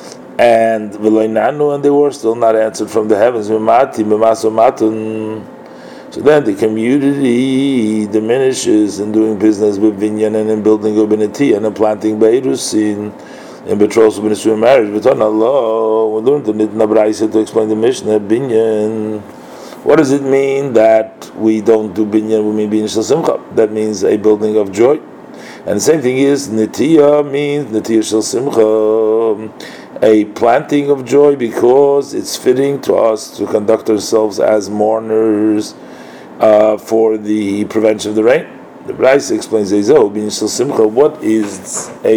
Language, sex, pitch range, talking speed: English, male, 105-110 Hz, 135 wpm